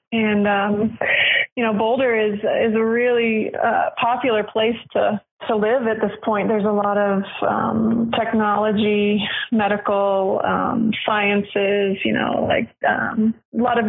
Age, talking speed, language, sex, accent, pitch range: 20-39, 145 wpm, English, female, American, 200-235 Hz